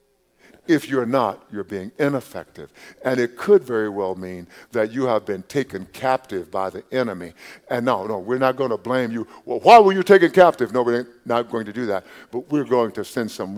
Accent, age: American, 60-79